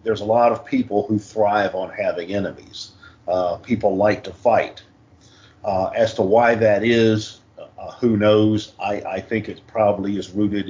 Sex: male